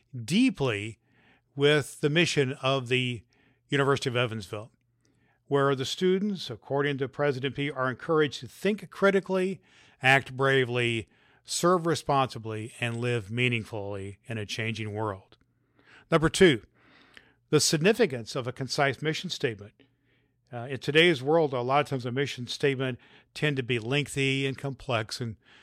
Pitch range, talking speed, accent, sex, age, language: 120-145 Hz, 140 wpm, American, male, 50-69, English